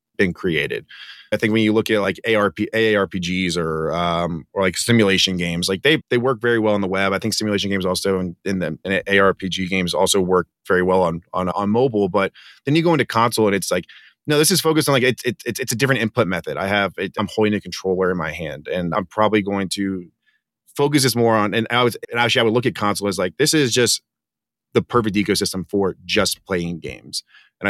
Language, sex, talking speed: English, male, 240 wpm